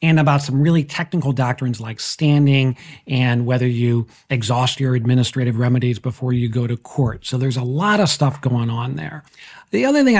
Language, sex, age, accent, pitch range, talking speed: English, male, 40-59, American, 125-155 Hz, 190 wpm